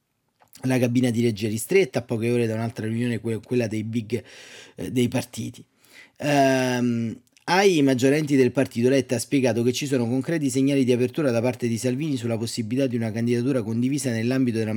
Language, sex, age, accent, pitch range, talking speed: Italian, male, 30-49, native, 115-145 Hz, 180 wpm